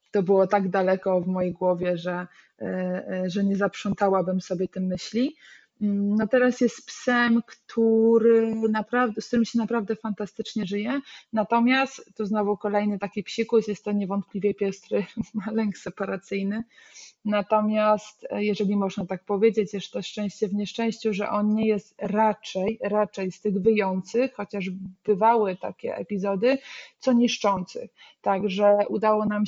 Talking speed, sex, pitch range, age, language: 140 wpm, female, 185-215 Hz, 20-39, Polish